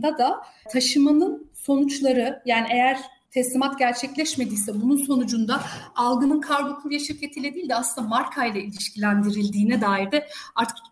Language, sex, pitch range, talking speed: Turkish, female, 230-285 Hz, 120 wpm